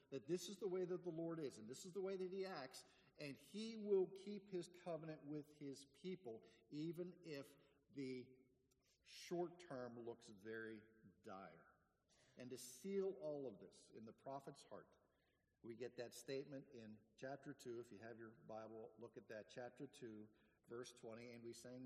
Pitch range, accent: 120-165 Hz, American